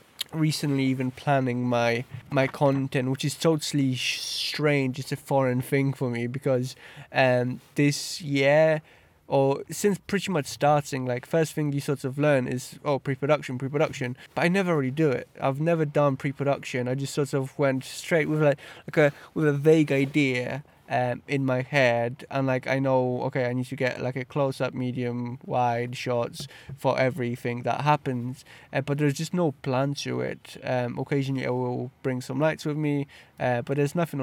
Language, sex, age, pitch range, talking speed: English, male, 20-39, 125-145 Hz, 185 wpm